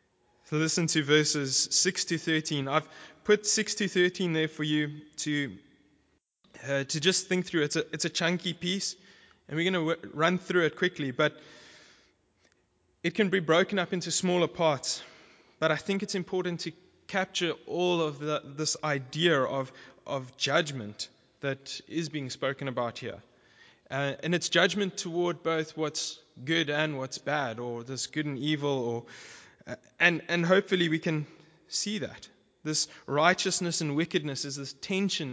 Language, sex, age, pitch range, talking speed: English, male, 20-39, 135-175 Hz, 165 wpm